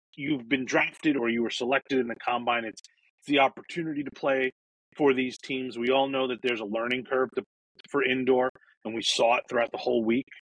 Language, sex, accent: English, male, American